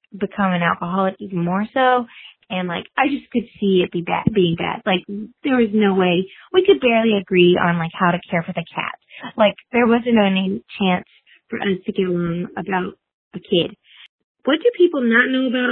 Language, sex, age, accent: English, female, 20-39, American